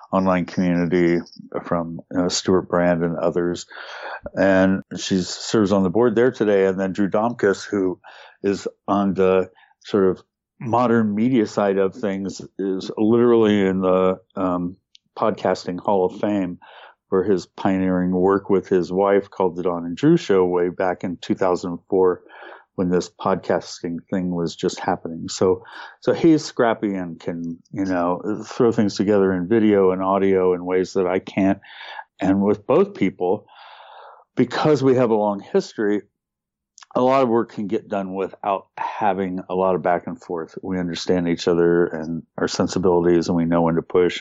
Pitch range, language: 90-105 Hz, English